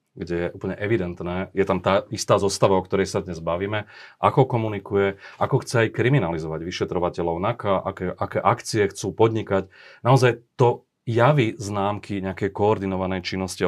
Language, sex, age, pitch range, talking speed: Slovak, male, 30-49, 90-115 Hz, 150 wpm